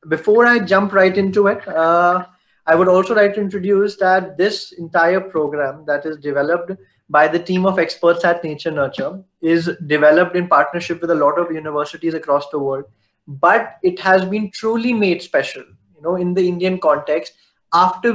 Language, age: English, 20-39